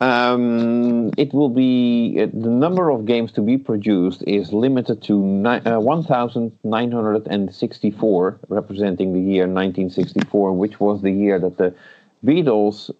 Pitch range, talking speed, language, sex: 90-110 Hz, 130 wpm, English, male